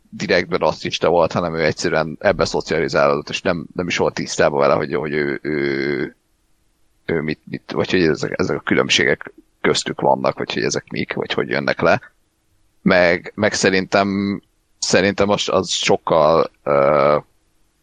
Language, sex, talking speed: Hungarian, male, 165 wpm